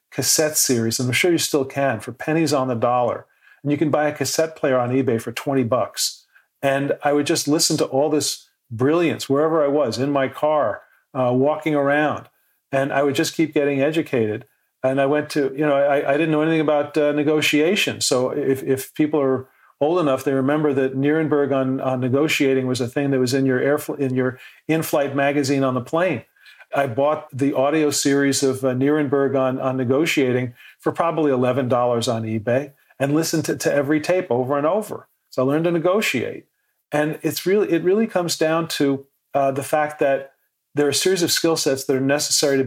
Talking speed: 205 wpm